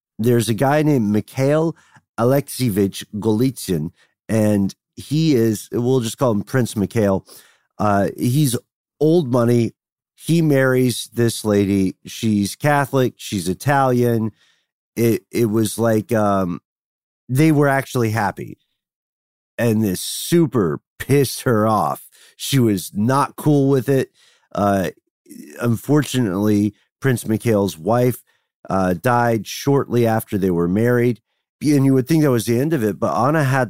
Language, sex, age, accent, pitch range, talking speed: English, male, 40-59, American, 100-125 Hz, 130 wpm